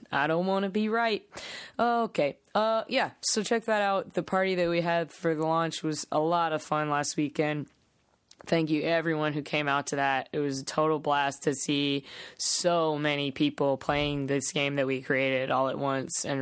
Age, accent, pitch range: 20-39, American, 135-180 Hz